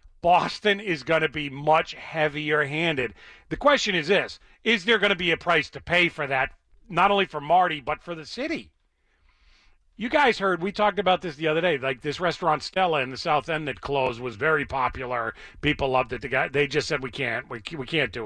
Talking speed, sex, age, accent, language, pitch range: 220 wpm, male, 40-59, American, English, 140-215 Hz